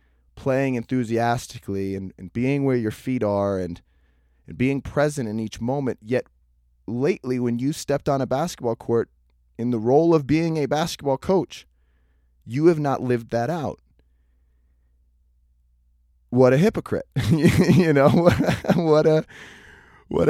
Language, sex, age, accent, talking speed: English, male, 20-39, American, 145 wpm